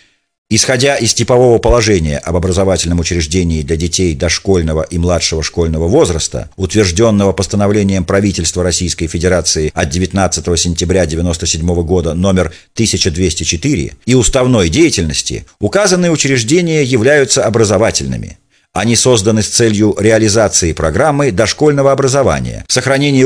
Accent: native